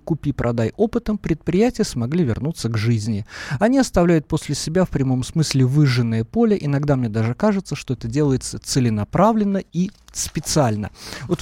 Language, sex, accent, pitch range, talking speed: Russian, male, native, 130-180 Hz, 140 wpm